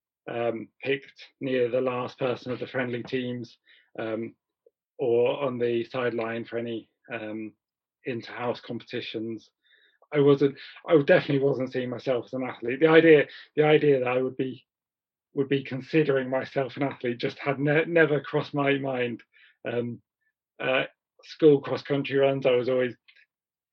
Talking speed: 150 wpm